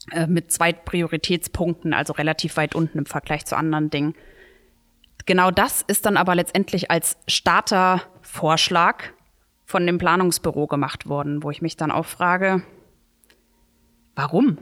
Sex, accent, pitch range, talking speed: female, German, 165-195 Hz, 130 wpm